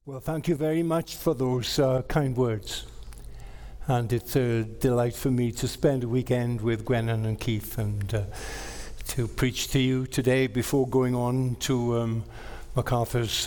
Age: 60-79